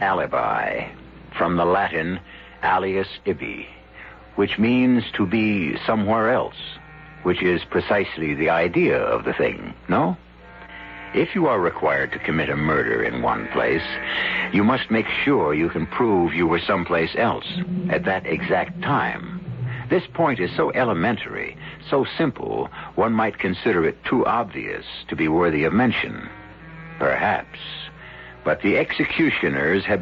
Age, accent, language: 60-79, American, English